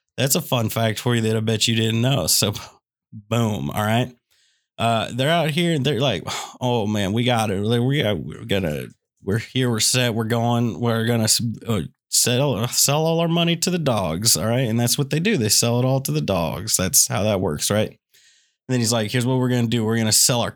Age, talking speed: 30-49, 250 wpm